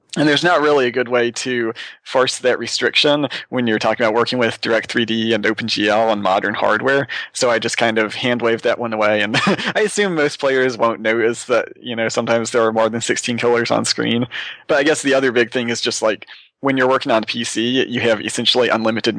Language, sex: English, male